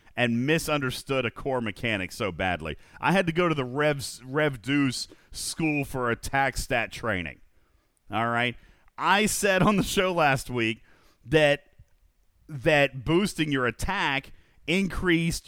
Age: 40-59